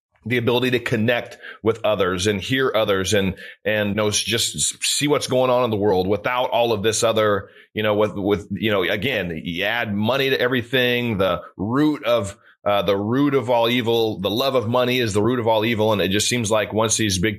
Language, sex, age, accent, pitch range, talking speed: English, male, 30-49, American, 100-125 Hz, 225 wpm